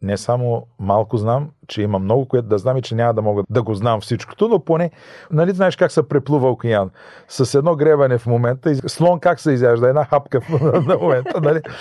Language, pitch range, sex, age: Bulgarian, 105-140 Hz, male, 40-59